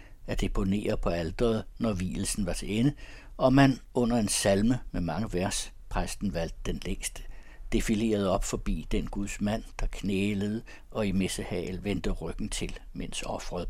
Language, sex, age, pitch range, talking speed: Danish, male, 60-79, 95-120 Hz, 160 wpm